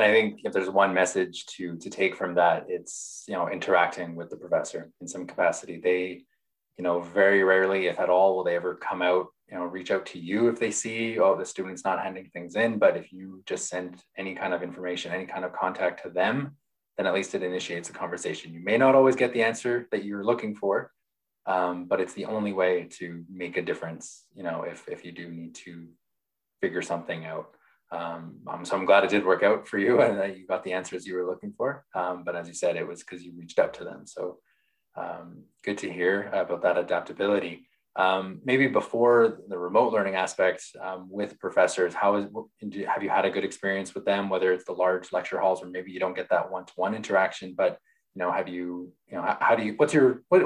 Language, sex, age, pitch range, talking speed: English, male, 20-39, 90-105 Hz, 215 wpm